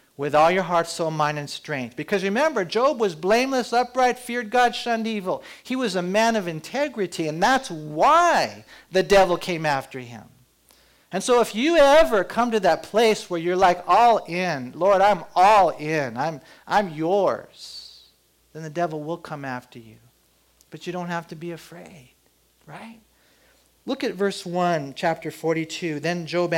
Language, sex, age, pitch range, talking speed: English, male, 40-59, 160-215 Hz, 170 wpm